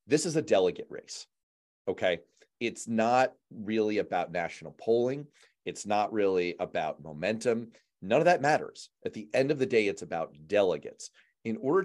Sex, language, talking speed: male, English, 160 wpm